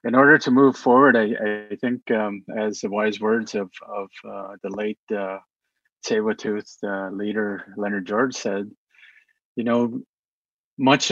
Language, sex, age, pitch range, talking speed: English, male, 30-49, 105-115 Hz, 150 wpm